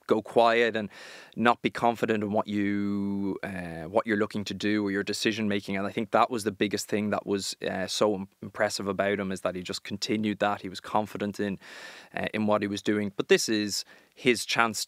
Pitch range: 100-110 Hz